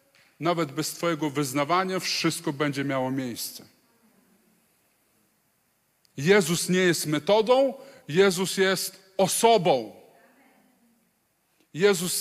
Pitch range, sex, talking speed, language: 160-220 Hz, male, 80 wpm, Polish